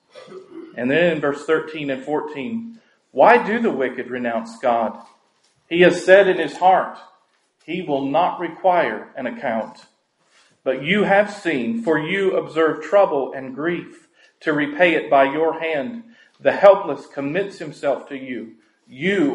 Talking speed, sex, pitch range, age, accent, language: 150 wpm, male, 140-175 Hz, 40-59, American, English